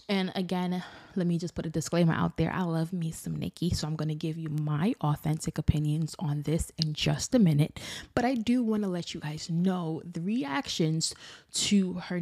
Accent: American